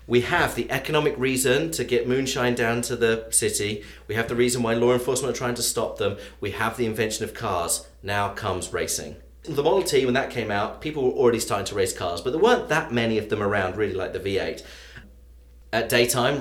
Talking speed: 225 wpm